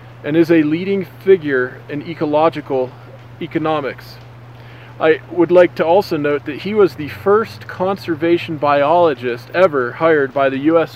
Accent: American